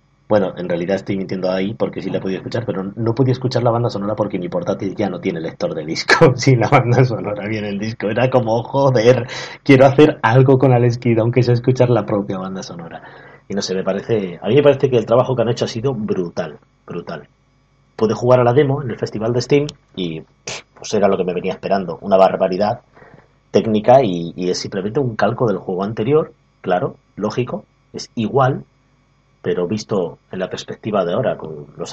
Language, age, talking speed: Spanish, 30-49, 210 wpm